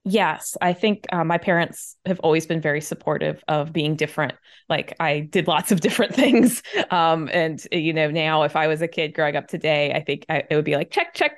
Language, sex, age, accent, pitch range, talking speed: English, female, 20-39, American, 155-250 Hz, 220 wpm